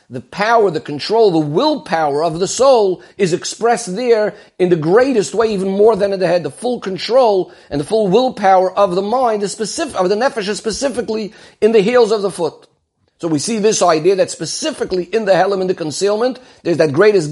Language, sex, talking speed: English, male, 210 wpm